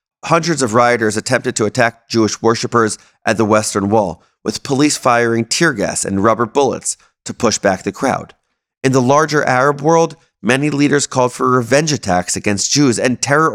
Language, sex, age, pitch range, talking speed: English, male, 30-49, 115-160 Hz, 175 wpm